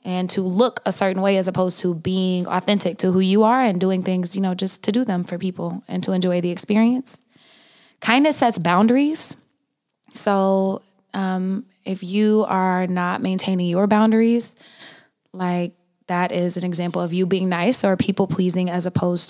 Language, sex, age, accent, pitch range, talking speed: English, female, 20-39, American, 180-210 Hz, 175 wpm